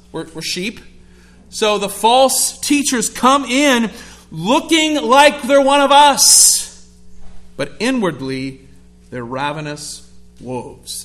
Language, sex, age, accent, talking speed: English, male, 40-59, American, 110 wpm